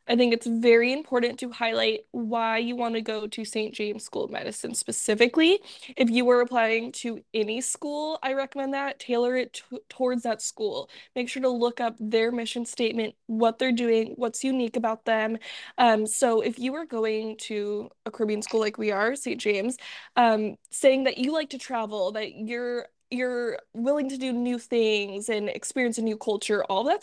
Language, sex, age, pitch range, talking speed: English, female, 20-39, 220-255 Hz, 190 wpm